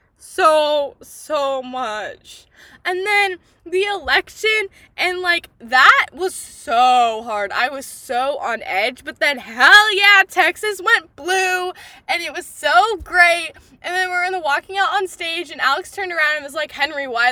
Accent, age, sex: American, 10-29, female